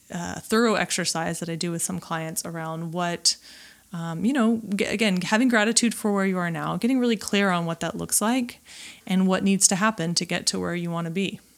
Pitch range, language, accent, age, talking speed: 170-210 Hz, English, American, 20-39, 220 wpm